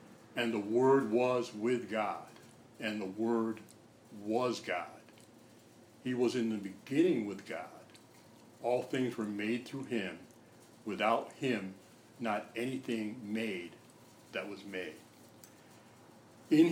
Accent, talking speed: American, 120 wpm